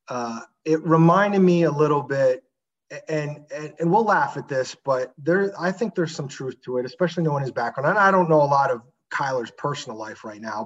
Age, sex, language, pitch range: 30-49, male, English, 145-175 Hz